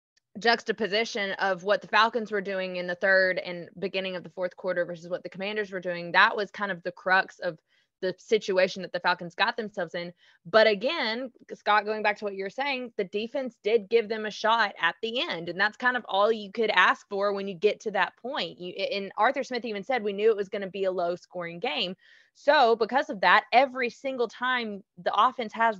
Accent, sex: American, female